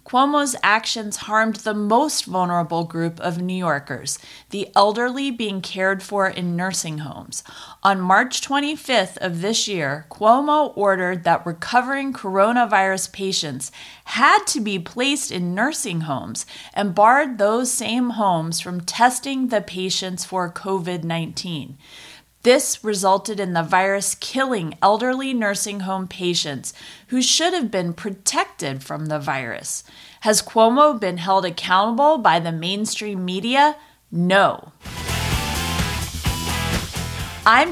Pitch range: 175-235 Hz